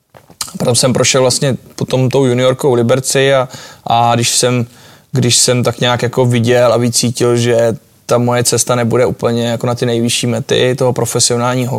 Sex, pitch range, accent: male, 120-130 Hz, native